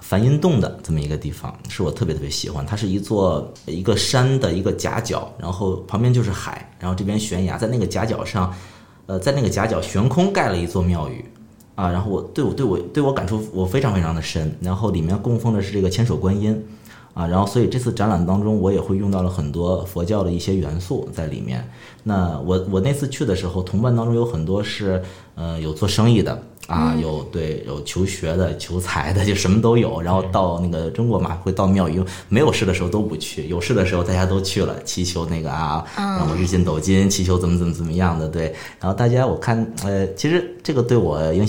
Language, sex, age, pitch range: Chinese, male, 30-49, 90-110 Hz